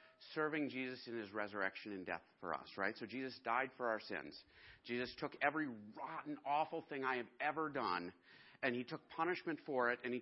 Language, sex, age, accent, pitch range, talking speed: English, male, 40-59, American, 115-145 Hz, 200 wpm